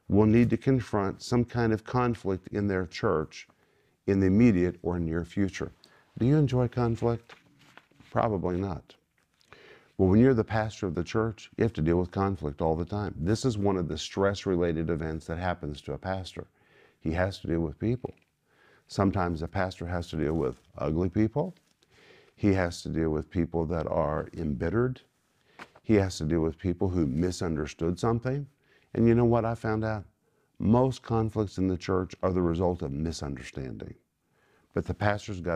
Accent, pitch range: American, 85-115 Hz